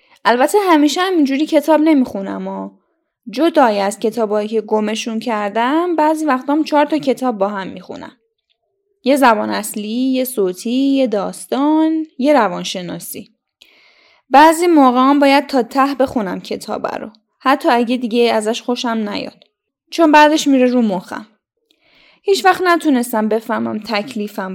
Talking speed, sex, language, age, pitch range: 135 wpm, female, Persian, 10-29, 225-300 Hz